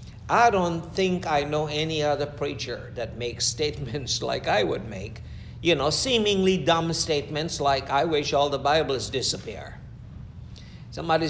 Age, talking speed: 60-79, 150 wpm